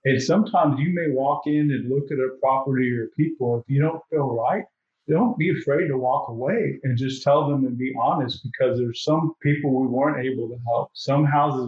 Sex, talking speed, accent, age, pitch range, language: male, 215 wpm, American, 40-59, 125-145 Hz, English